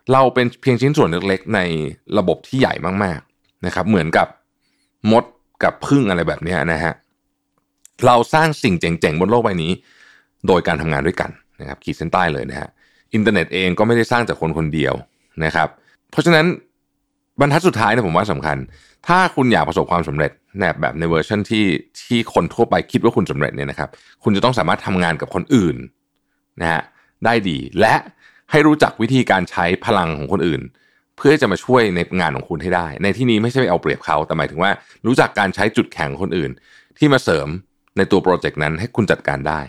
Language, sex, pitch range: Thai, male, 85-120 Hz